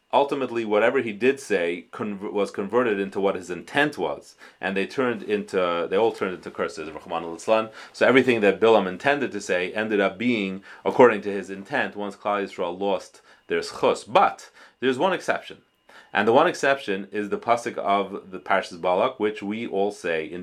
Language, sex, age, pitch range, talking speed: English, male, 30-49, 95-120 Hz, 180 wpm